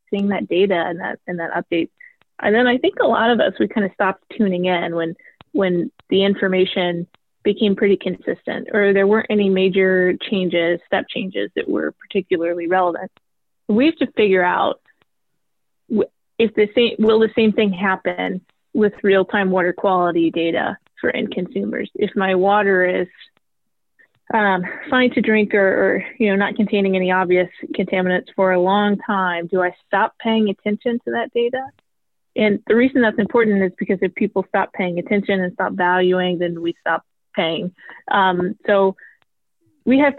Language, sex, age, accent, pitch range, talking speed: English, female, 20-39, American, 180-220 Hz, 170 wpm